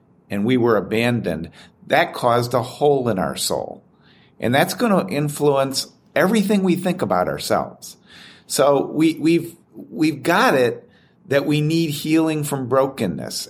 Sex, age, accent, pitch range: male, 50-69, American, 125-160 Hz